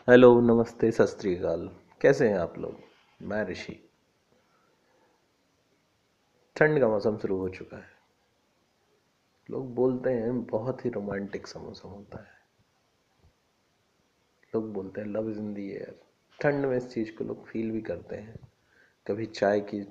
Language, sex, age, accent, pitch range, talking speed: English, male, 30-49, Indian, 110-130 Hz, 135 wpm